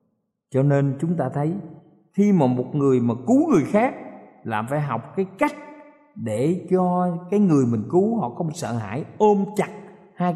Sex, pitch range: male, 115-175 Hz